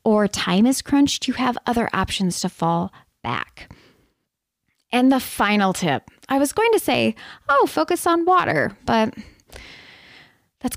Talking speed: 145 wpm